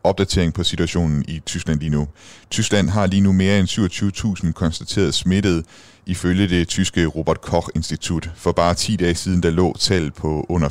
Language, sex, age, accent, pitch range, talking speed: Danish, male, 30-49, native, 80-100 Hz, 175 wpm